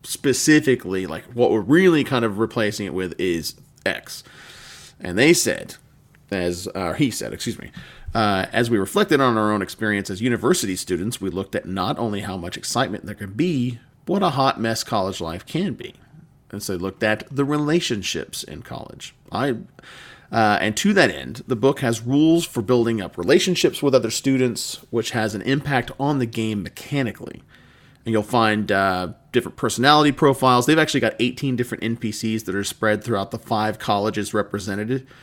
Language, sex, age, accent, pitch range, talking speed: English, male, 30-49, American, 105-135 Hz, 180 wpm